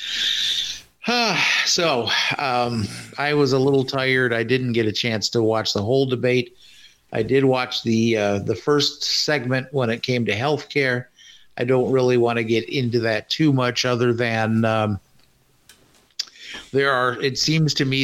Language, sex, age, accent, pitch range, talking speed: English, male, 50-69, American, 110-135 Hz, 165 wpm